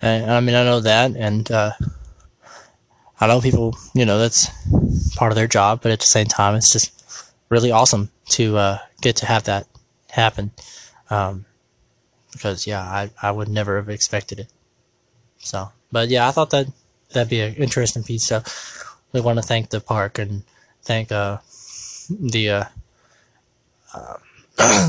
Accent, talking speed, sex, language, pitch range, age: American, 160 wpm, male, English, 110-125 Hz, 20-39